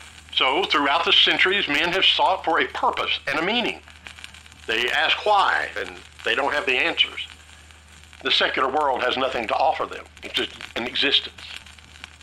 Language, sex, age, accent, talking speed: English, male, 50-69, American, 165 wpm